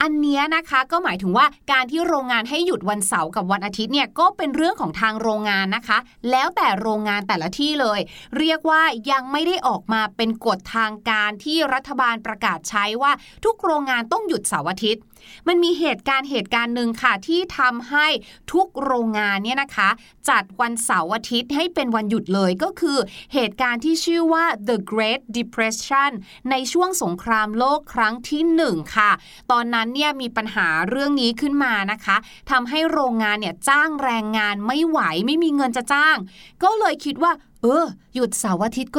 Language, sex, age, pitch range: Thai, female, 30-49, 215-290 Hz